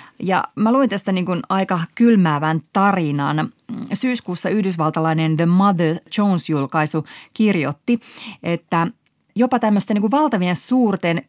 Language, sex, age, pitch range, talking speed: Finnish, female, 30-49, 160-220 Hz, 110 wpm